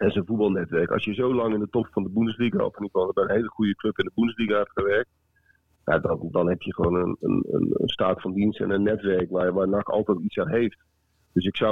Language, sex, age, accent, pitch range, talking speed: Dutch, male, 40-59, Dutch, 95-115 Hz, 260 wpm